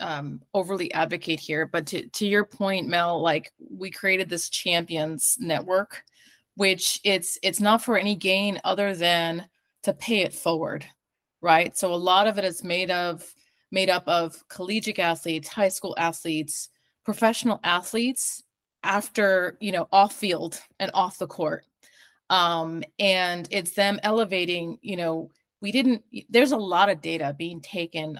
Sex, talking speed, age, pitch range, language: female, 155 wpm, 30-49, 170-215 Hz, English